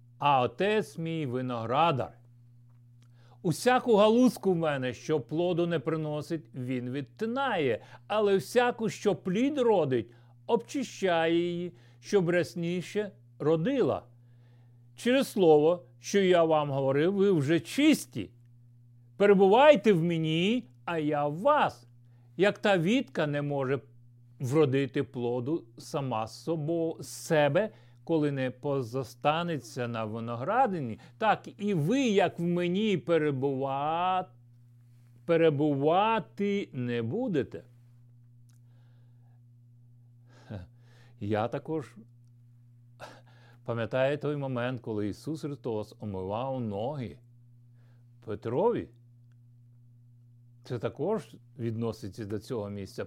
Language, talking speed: Ukrainian, 95 wpm